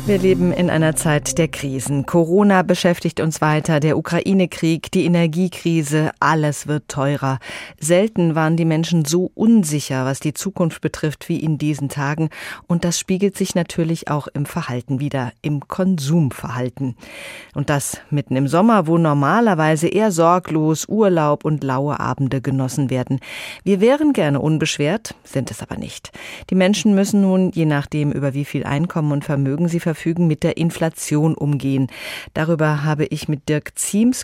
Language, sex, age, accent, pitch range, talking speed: German, female, 40-59, German, 145-185 Hz, 160 wpm